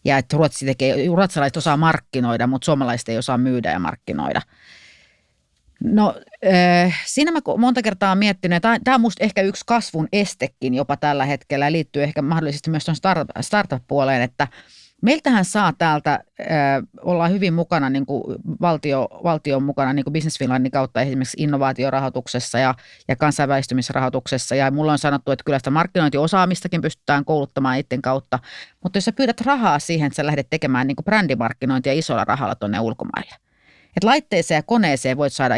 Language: Finnish